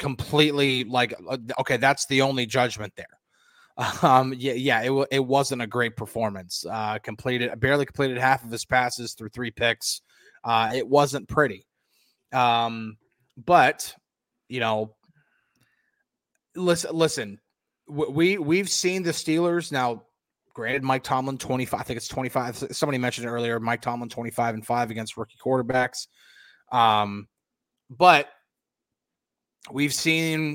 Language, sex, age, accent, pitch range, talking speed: English, male, 20-39, American, 120-145 Hz, 135 wpm